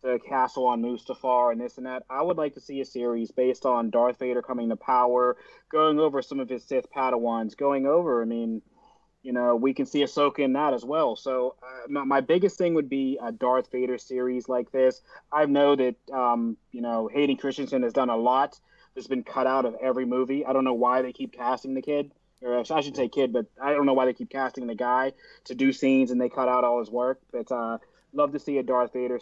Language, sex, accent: English, male, American